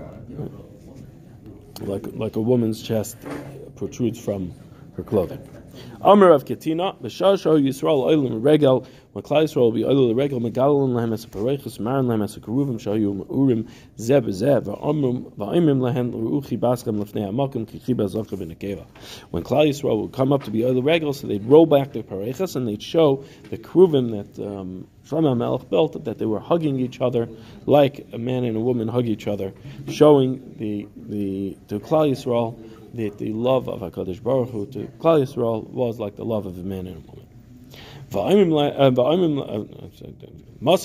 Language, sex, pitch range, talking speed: English, male, 110-140 Hz, 110 wpm